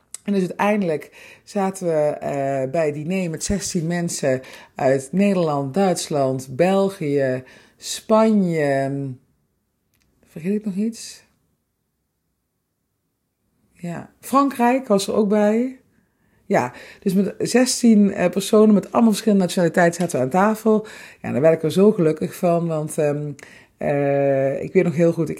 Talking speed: 135 wpm